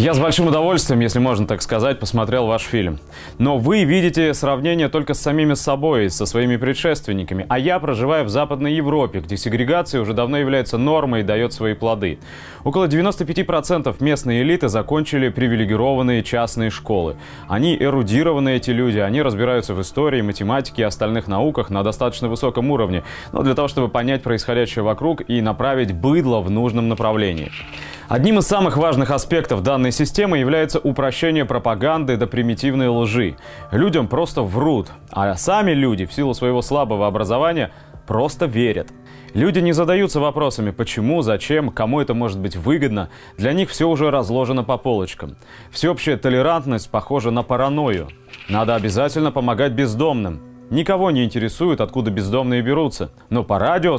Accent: native